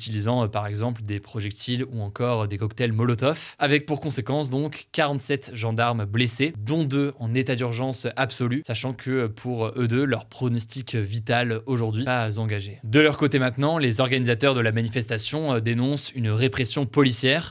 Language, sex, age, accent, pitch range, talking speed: French, male, 20-39, French, 115-140 Hz, 160 wpm